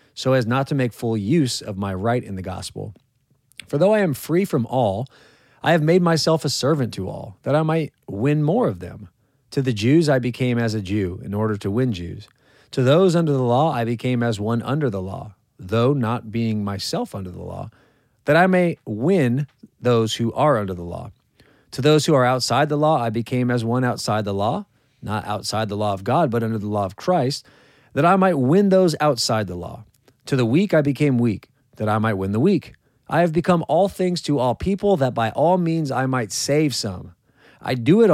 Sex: male